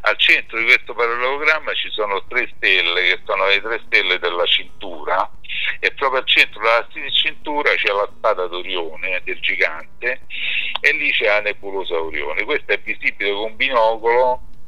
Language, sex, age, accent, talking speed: Italian, male, 50-69, native, 160 wpm